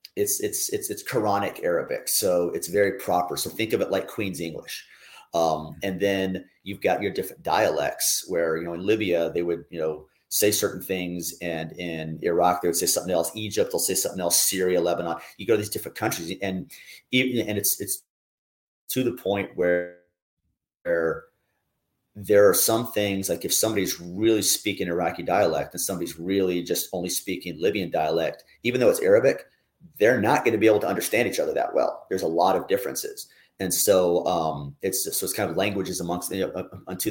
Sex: male